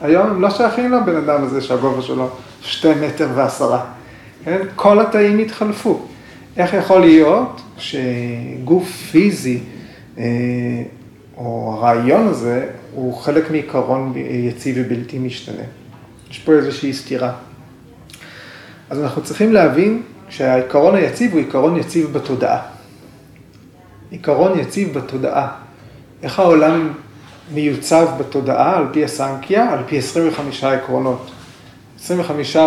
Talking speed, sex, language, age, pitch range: 105 wpm, male, Hebrew, 40-59, 130-170 Hz